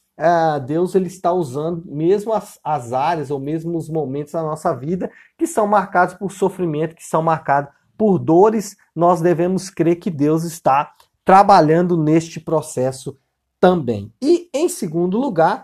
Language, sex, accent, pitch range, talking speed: Portuguese, male, Brazilian, 160-210 Hz, 145 wpm